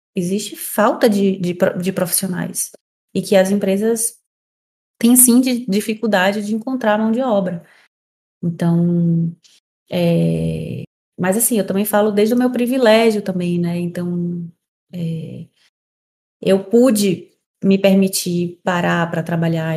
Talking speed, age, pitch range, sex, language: 125 wpm, 20-39, 175-225 Hz, female, Portuguese